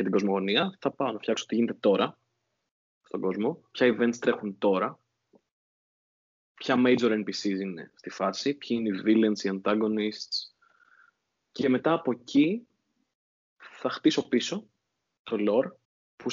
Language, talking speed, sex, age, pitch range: Greek, 130 wpm, male, 20-39, 105-145 Hz